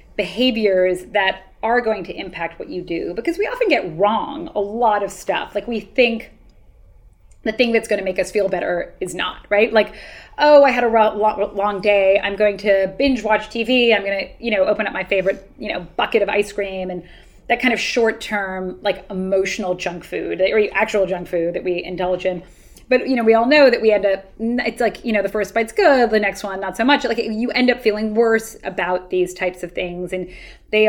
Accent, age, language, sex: American, 30-49, English, female